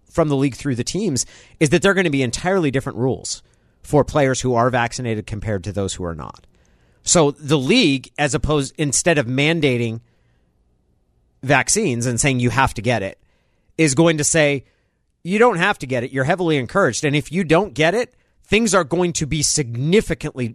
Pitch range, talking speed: 115-150 Hz, 195 wpm